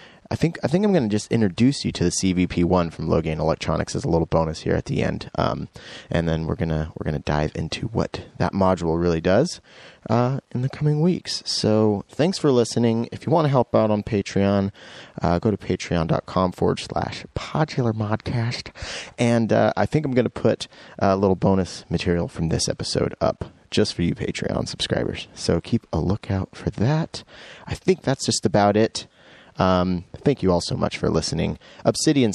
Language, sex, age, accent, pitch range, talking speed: English, male, 30-49, American, 85-120 Hz, 190 wpm